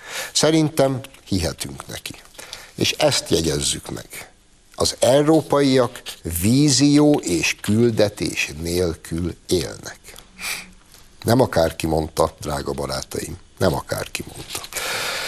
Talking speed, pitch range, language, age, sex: 85 wpm, 90-130 Hz, Hungarian, 60-79, male